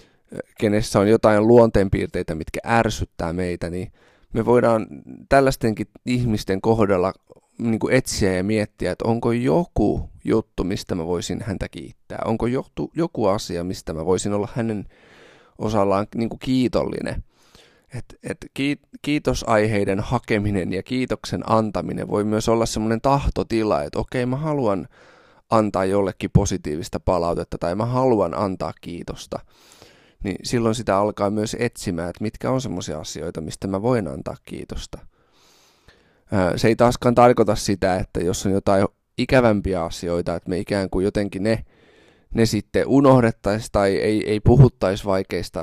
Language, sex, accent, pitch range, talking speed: Finnish, male, native, 95-115 Hz, 130 wpm